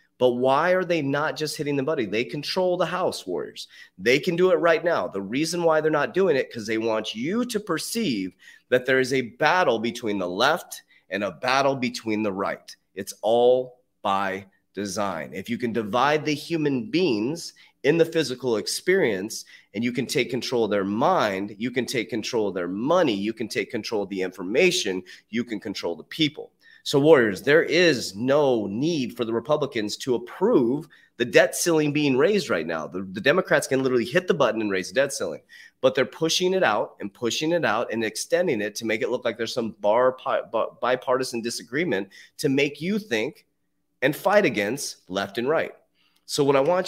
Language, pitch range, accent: English, 115-155 Hz, American